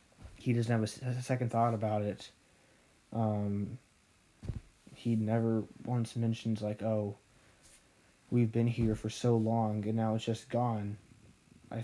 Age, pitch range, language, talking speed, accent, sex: 20-39, 105-115 Hz, English, 135 wpm, American, male